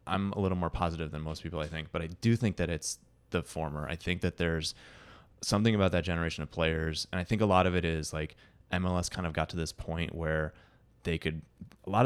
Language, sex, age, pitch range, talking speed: English, male, 20-39, 80-100 Hz, 245 wpm